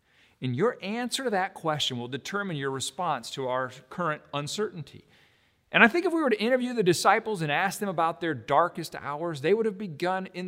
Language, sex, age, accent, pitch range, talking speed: English, male, 40-59, American, 145-210 Hz, 205 wpm